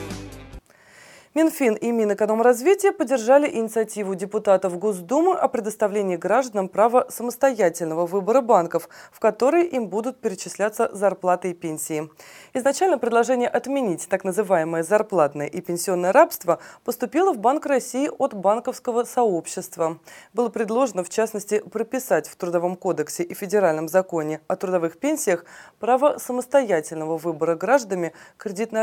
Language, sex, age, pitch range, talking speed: Russian, female, 20-39, 175-245 Hz, 120 wpm